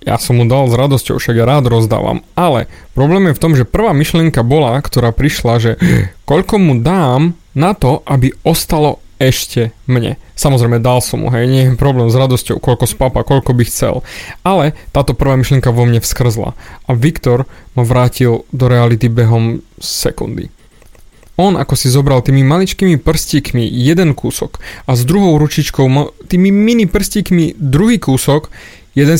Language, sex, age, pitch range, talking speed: Slovak, male, 20-39, 125-175 Hz, 165 wpm